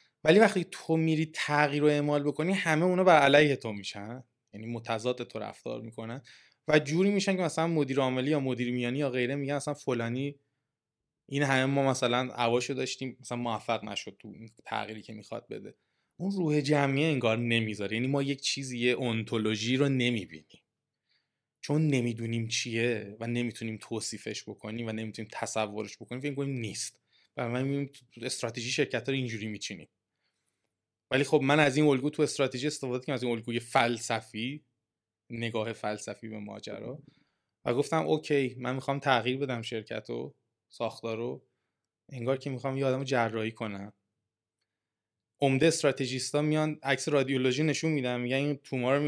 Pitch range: 115-140 Hz